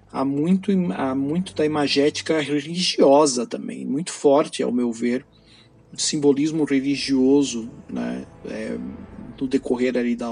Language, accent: Portuguese, Brazilian